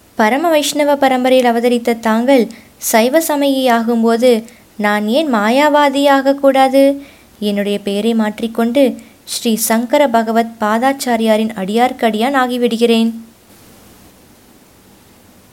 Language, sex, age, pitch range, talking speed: Tamil, female, 20-39, 215-255 Hz, 80 wpm